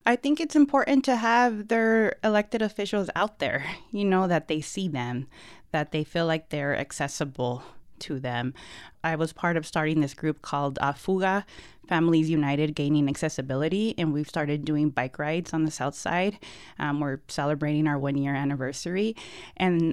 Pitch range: 140-175 Hz